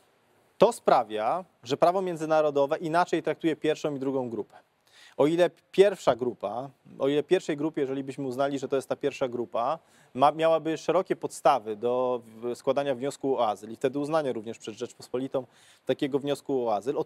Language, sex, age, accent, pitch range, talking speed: Polish, male, 20-39, native, 135-170 Hz, 170 wpm